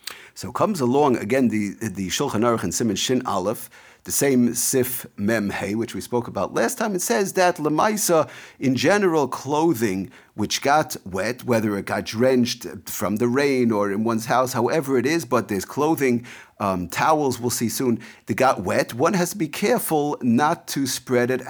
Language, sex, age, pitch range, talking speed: English, male, 40-59, 115-150 Hz, 185 wpm